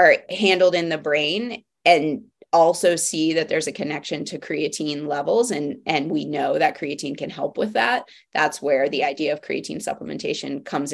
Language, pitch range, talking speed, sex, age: English, 150-180 Hz, 180 wpm, female, 20-39